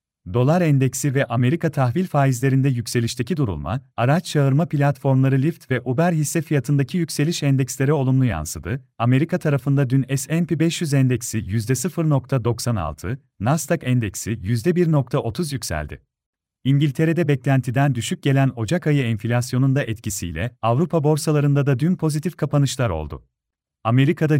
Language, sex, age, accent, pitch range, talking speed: Turkish, male, 40-59, native, 120-155 Hz, 120 wpm